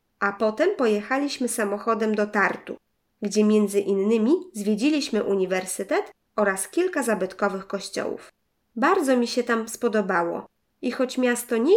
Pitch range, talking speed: 200-245 Hz, 120 wpm